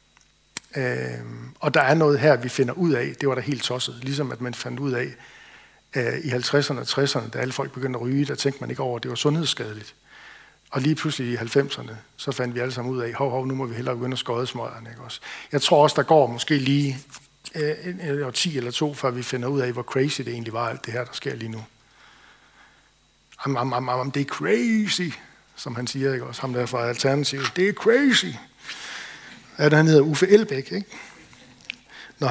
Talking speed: 225 wpm